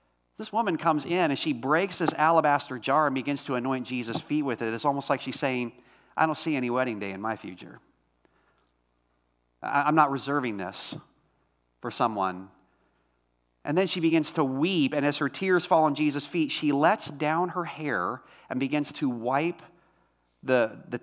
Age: 40-59